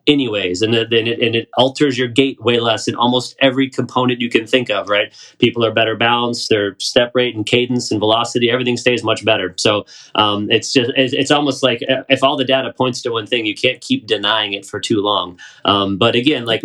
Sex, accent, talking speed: male, American, 230 wpm